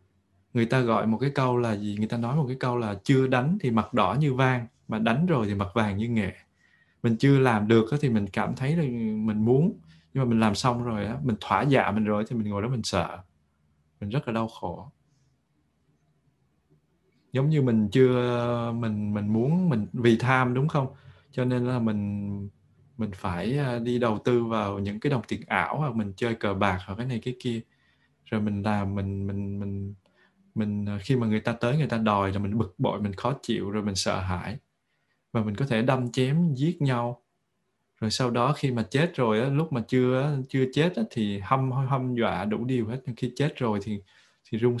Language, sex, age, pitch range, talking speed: Vietnamese, male, 20-39, 105-130 Hz, 215 wpm